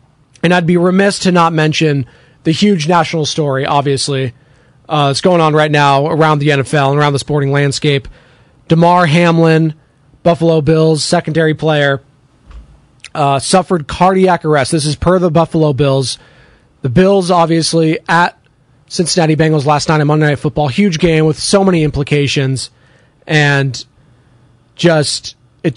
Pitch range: 135-165 Hz